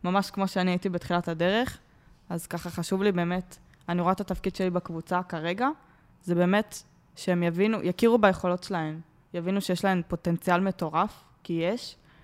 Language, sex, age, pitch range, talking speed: Hebrew, female, 20-39, 170-195 Hz, 155 wpm